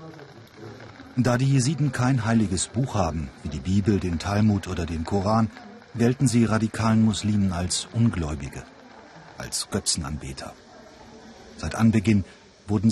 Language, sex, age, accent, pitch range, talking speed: German, male, 40-59, German, 95-130 Hz, 120 wpm